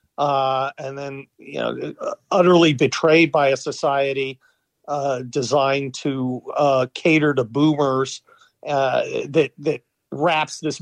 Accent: American